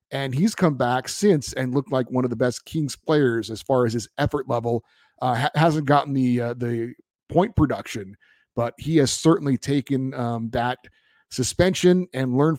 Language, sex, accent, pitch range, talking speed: English, male, American, 125-155 Hz, 185 wpm